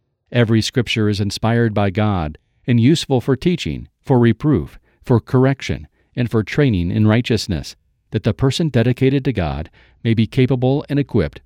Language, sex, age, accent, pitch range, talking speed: English, male, 50-69, American, 100-125 Hz, 155 wpm